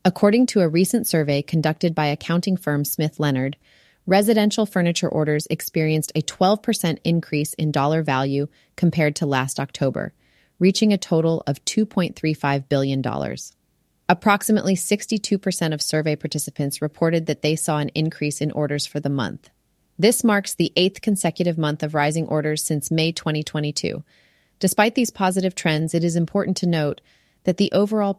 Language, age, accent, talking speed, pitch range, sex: English, 30-49, American, 150 wpm, 150-185 Hz, female